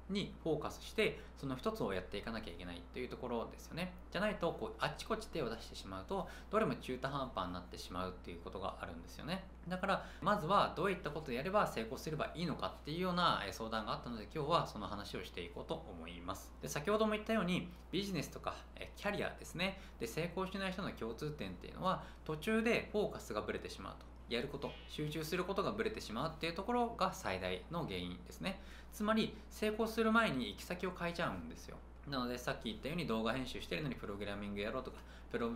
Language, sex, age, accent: Japanese, male, 20-39, native